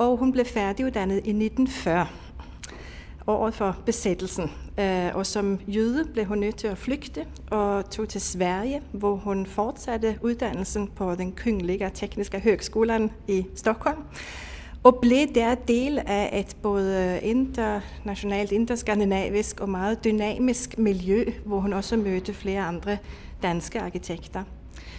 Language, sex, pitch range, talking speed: Danish, female, 185-220 Hz, 130 wpm